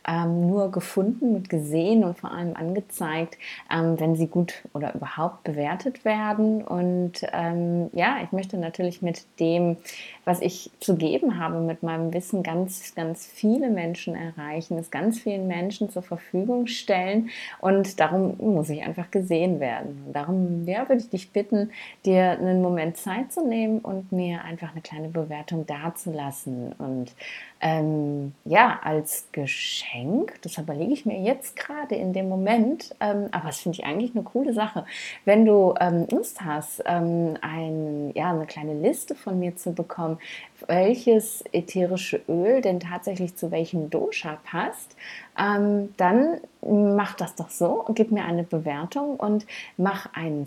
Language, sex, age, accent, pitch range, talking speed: German, female, 30-49, German, 165-210 Hz, 155 wpm